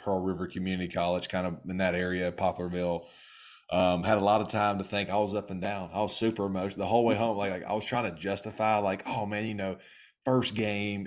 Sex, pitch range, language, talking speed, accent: male, 95-110 Hz, English, 245 wpm, American